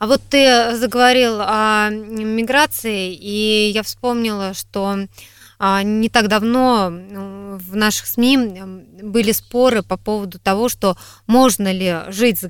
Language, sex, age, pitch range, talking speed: Russian, female, 20-39, 180-225 Hz, 125 wpm